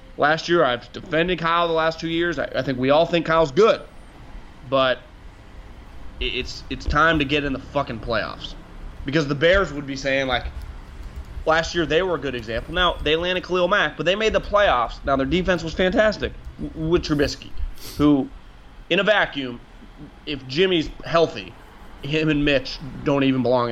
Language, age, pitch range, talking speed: English, 30-49, 130-165 Hz, 175 wpm